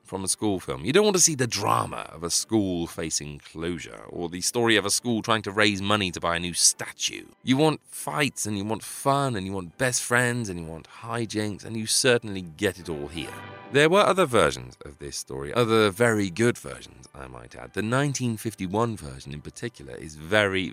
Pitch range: 85-120 Hz